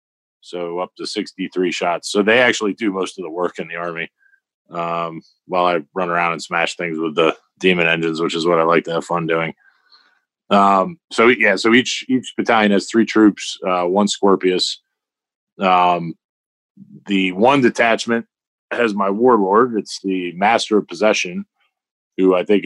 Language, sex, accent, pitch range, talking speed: English, male, American, 90-100 Hz, 170 wpm